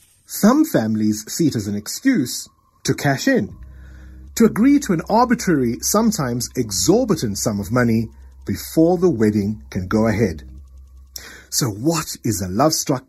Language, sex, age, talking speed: English, male, 60-79, 140 wpm